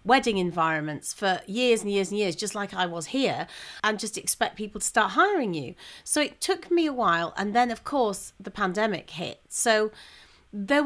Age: 40-59